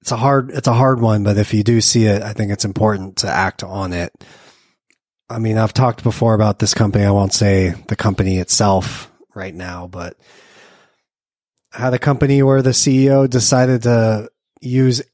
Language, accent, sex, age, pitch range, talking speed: English, American, male, 30-49, 100-130 Hz, 190 wpm